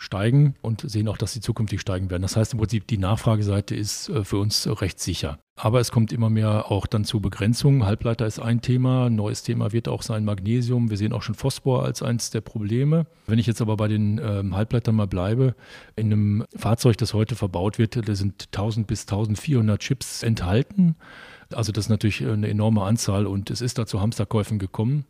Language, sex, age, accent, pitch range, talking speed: German, male, 40-59, German, 105-115 Hz, 200 wpm